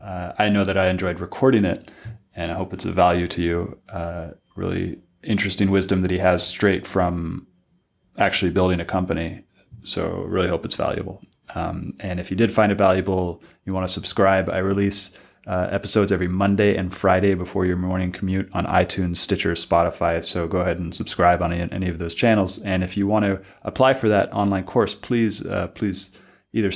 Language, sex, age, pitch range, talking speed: English, male, 20-39, 90-100 Hz, 195 wpm